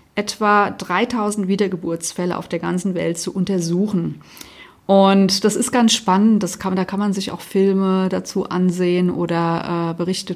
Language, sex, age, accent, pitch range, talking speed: German, female, 40-59, German, 190-235 Hz, 155 wpm